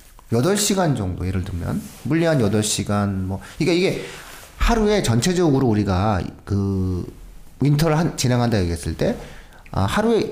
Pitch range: 95-160 Hz